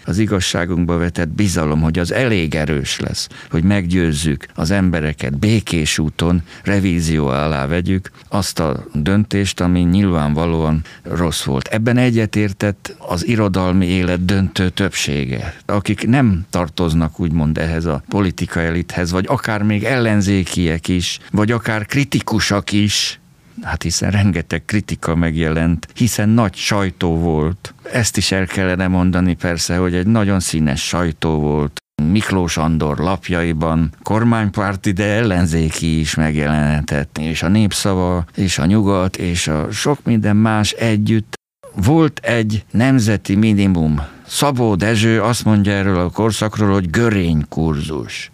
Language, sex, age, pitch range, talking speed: Hungarian, male, 50-69, 80-105 Hz, 130 wpm